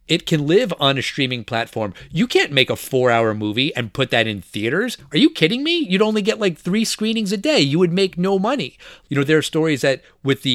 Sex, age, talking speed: male, 30-49, 245 wpm